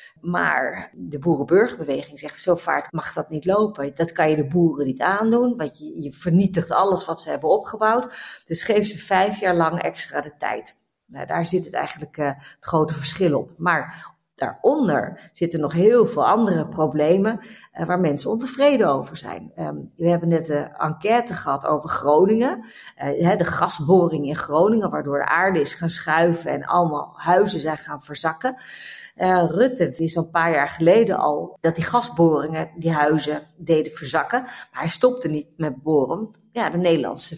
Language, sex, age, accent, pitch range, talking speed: Dutch, female, 40-59, Dutch, 155-210 Hz, 165 wpm